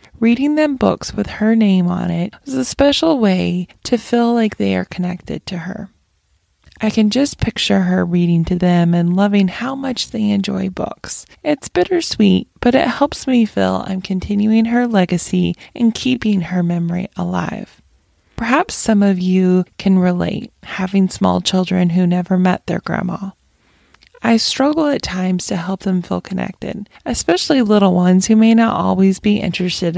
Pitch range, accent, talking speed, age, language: 180-230 Hz, American, 165 wpm, 20-39, English